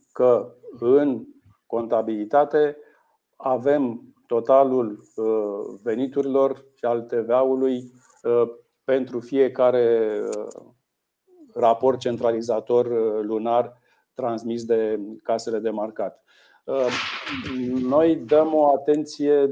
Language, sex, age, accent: Romanian, male, 50-69, native